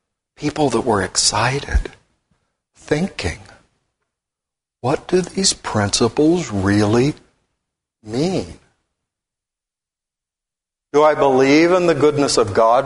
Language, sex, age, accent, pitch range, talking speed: English, male, 60-79, American, 110-155 Hz, 90 wpm